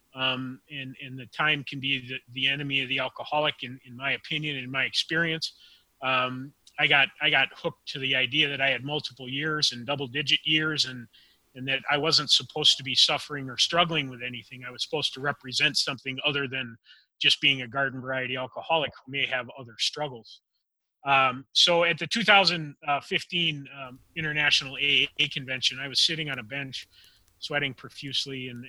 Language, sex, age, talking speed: English, male, 30-49, 185 wpm